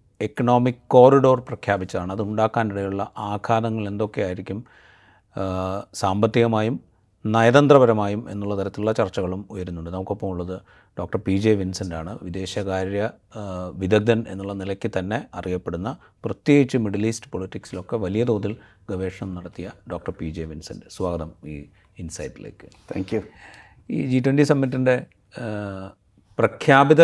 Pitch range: 100-125 Hz